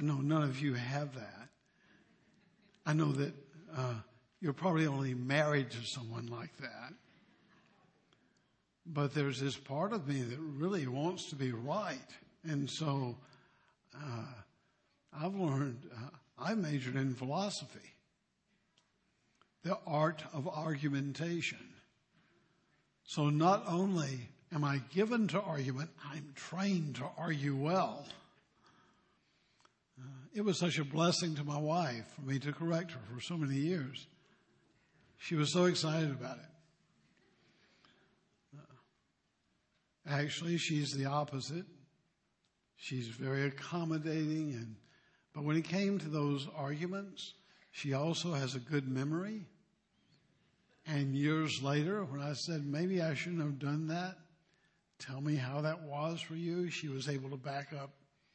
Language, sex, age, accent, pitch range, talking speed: English, male, 60-79, American, 140-170 Hz, 130 wpm